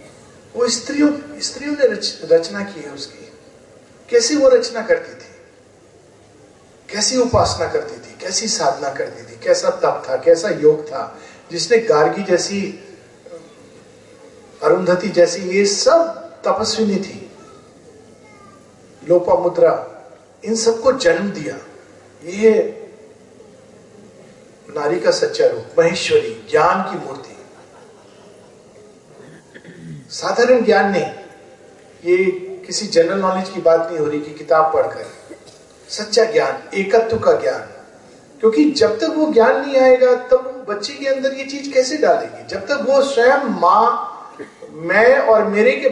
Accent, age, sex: native, 50-69, male